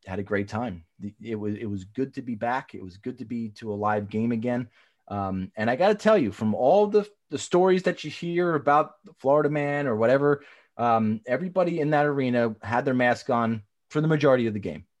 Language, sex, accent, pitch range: English, male, American, 105-150 Hz